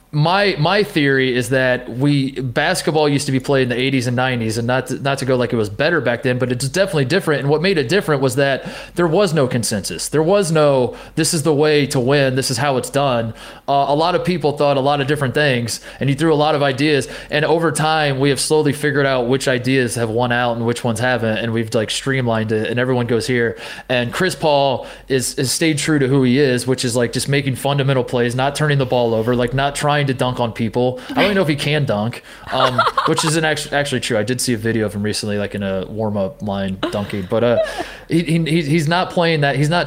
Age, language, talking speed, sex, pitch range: 20-39, English, 255 wpm, male, 125-155 Hz